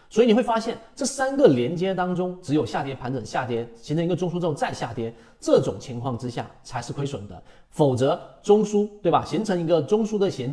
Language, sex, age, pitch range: Chinese, male, 40-59, 120-175 Hz